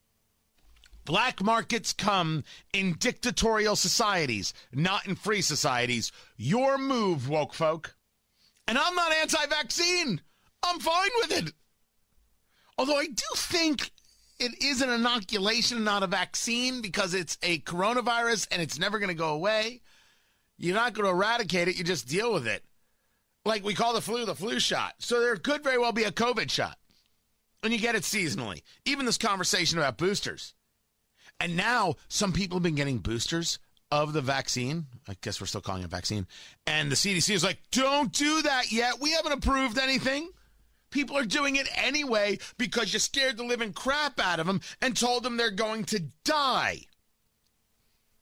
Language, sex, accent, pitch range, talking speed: English, male, American, 155-245 Hz, 165 wpm